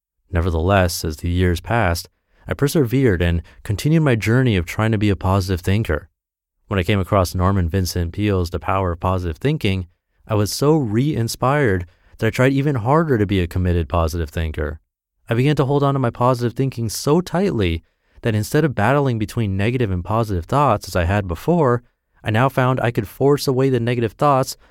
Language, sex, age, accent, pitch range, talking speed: English, male, 30-49, American, 90-120 Hz, 190 wpm